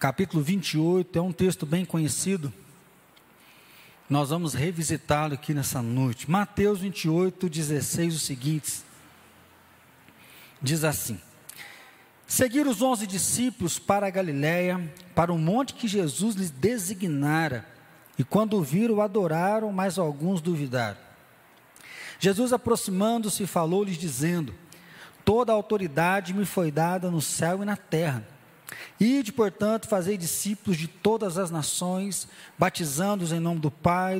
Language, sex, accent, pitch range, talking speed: Portuguese, male, Brazilian, 160-205 Hz, 125 wpm